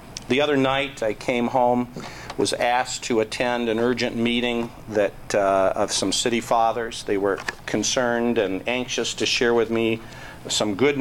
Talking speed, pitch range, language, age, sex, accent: 165 wpm, 105-125 Hz, English, 50-69, male, American